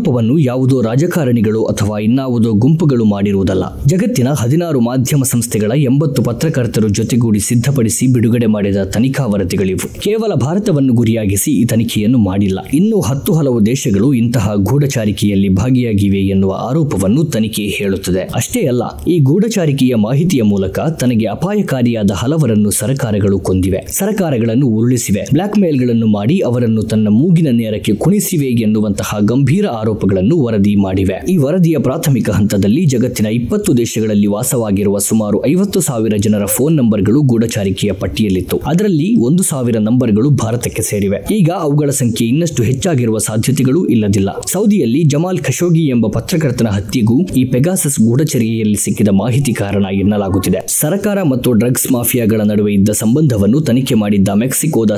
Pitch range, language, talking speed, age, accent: 105-145 Hz, Kannada, 120 wpm, 20-39, native